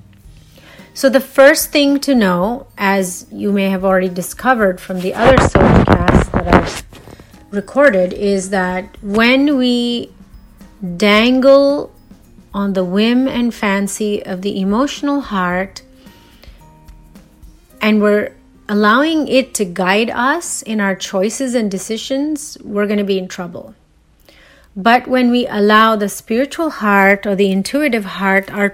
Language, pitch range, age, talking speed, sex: English, 185-235 Hz, 30-49, 130 wpm, female